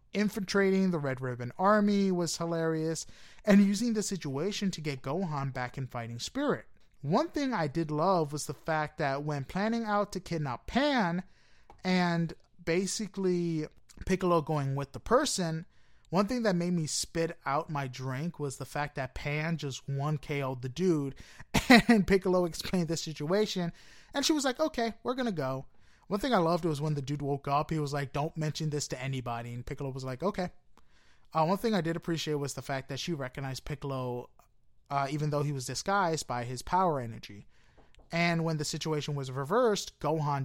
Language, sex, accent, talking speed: English, male, American, 185 wpm